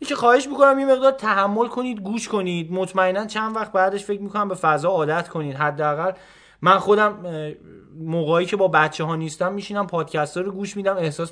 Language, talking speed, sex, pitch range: Persian, 180 wpm, male, 140-190 Hz